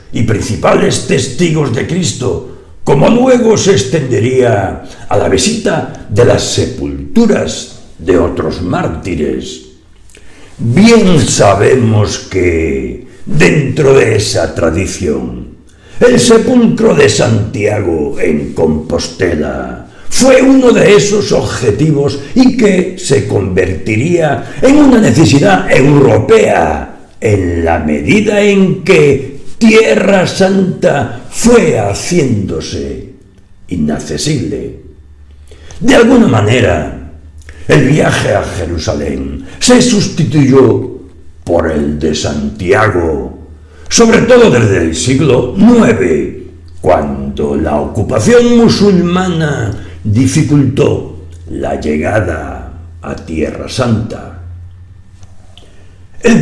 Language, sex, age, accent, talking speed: Spanish, male, 60-79, Spanish, 90 wpm